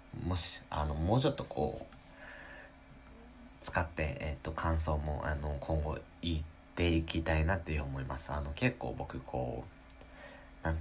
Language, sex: Japanese, male